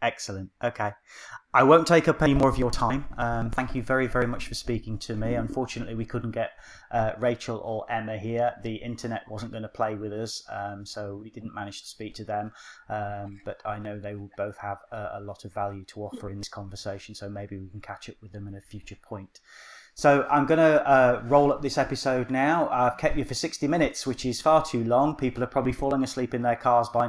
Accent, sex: British, male